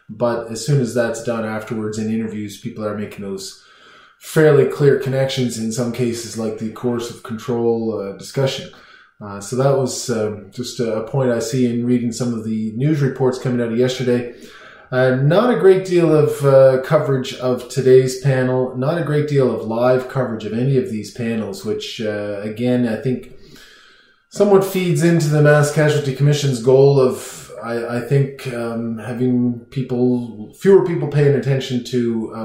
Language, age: English, 20-39